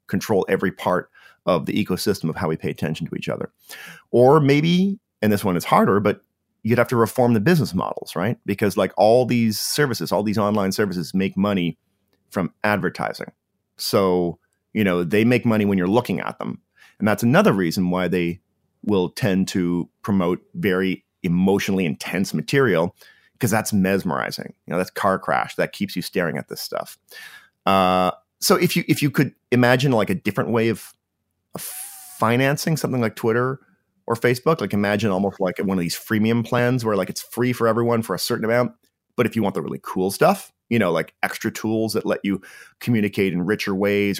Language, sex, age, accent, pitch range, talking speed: English, male, 30-49, American, 95-120 Hz, 190 wpm